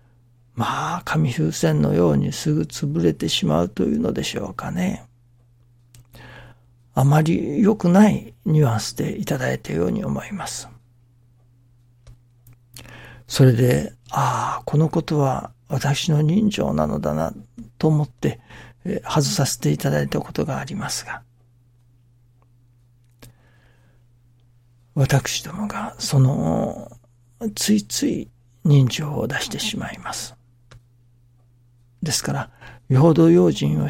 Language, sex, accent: Japanese, male, native